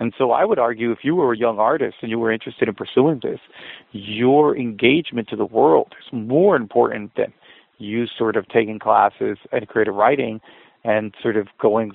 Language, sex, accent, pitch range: English, male, American, 110-125 Hz